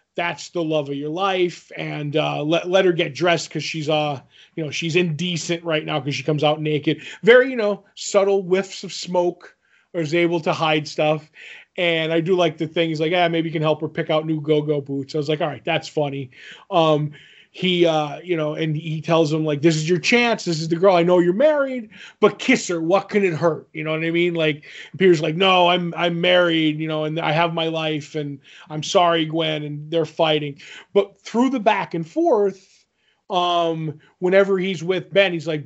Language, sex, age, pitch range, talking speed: English, male, 20-39, 155-190 Hz, 225 wpm